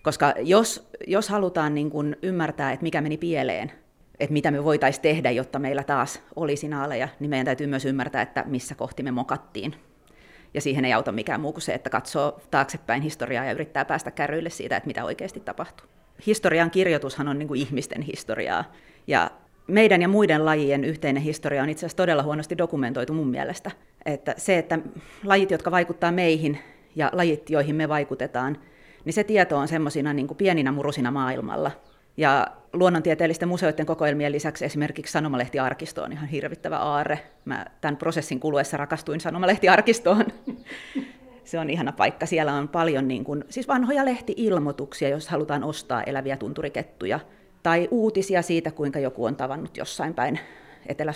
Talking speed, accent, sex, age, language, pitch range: 160 wpm, native, female, 30-49, Finnish, 140-175 Hz